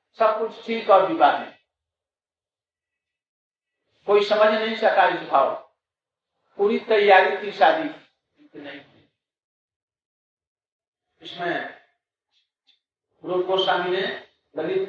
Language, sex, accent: Hindi, male, native